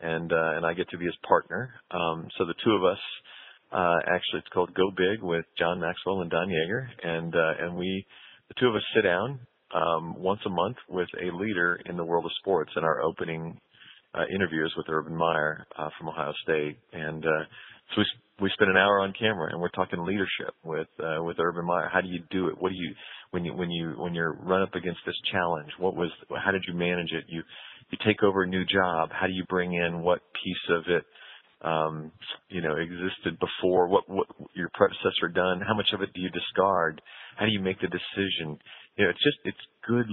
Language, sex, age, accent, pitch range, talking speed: English, male, 40-59, American, 85-95 Hz, 225 wpm